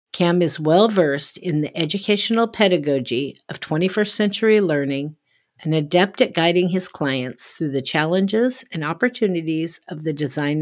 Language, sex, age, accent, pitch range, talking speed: English, female, 50-69, American, 150-205 Hz, 140 wpm